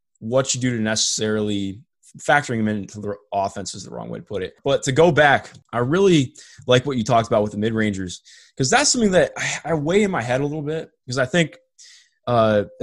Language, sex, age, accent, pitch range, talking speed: English, male, 20-39, American, 105-130 Hz, 225 wpm